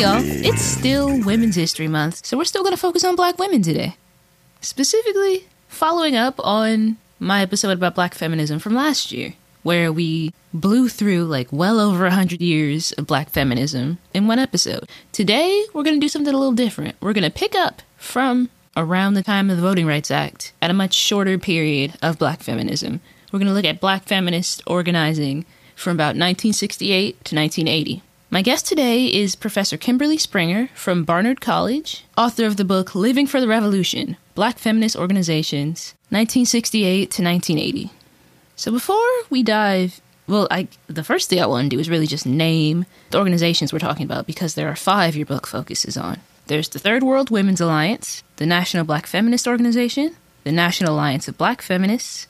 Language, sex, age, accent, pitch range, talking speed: English, female, 20-39, American, 165-235 Hz, 180 wpm